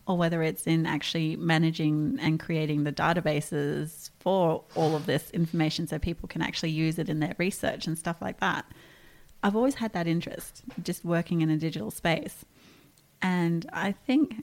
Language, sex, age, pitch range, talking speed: English, female, 30-49, 165-215 Hz, 175 wpm